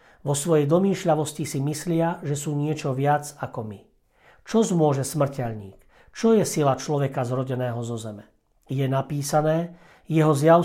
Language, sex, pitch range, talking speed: Slovak, male, 135-165 Hz, 140 wpm